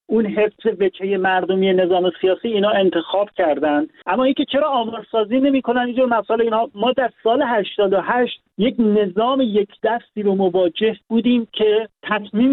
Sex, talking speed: male, 150 wpm